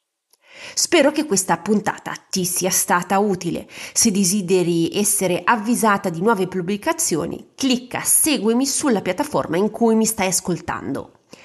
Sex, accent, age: female, native, 30-49